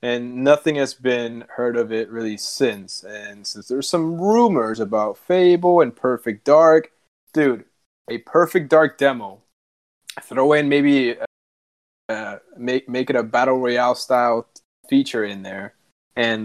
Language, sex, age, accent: English, male, 20-39, American